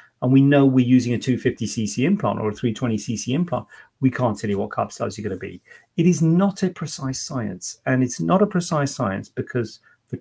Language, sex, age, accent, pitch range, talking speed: English, male, 40-59, British, 115-155 Hz, 230 wpm